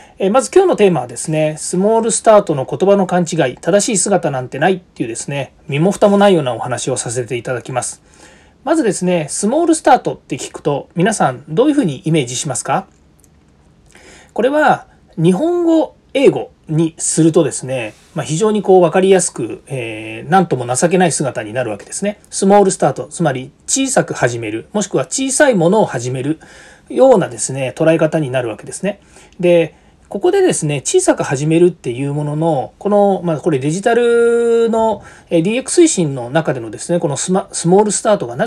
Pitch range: 135-205 Hz